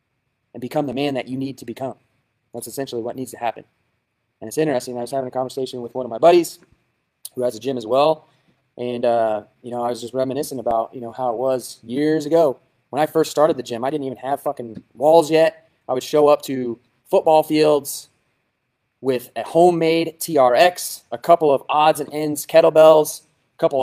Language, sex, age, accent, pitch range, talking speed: English, male, 20-39, American, 125-150 Hz, 210 wpm